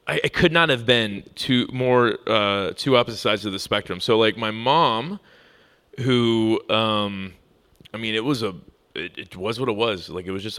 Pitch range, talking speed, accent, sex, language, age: 100-125 Hz, 205 wpm, American, male, English, 30-49